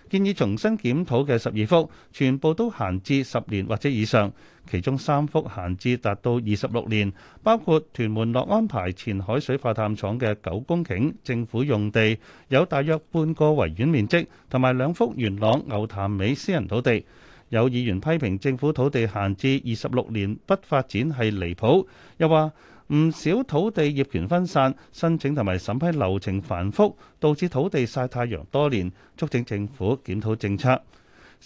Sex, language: male, Chinese